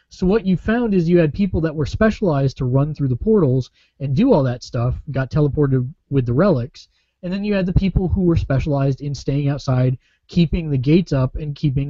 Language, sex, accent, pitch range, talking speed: English, male, American, 130-165 Hz, 220 wpm